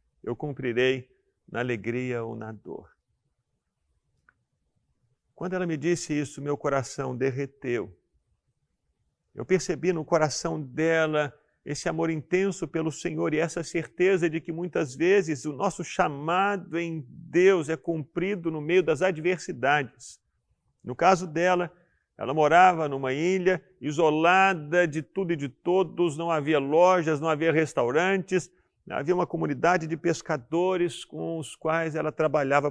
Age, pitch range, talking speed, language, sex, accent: 50-69, 135-175 Hz, 130 wpm, Portuguese, male, Brazilian